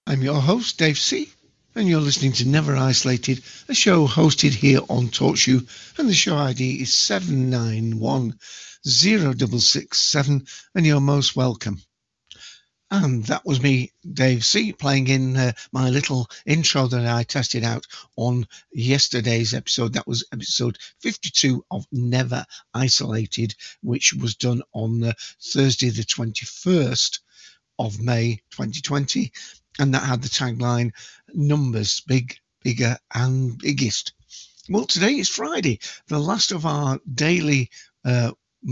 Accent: British